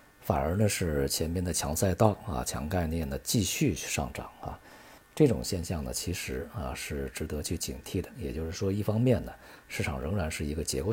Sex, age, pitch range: male, 50-69, 70-100 Hz